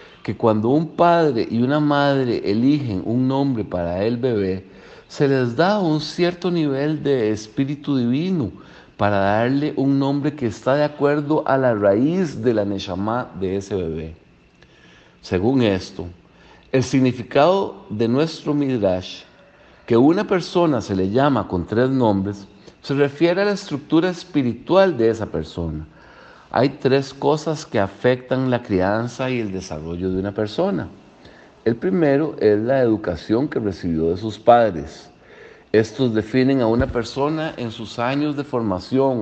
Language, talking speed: Spanish, 150 wpm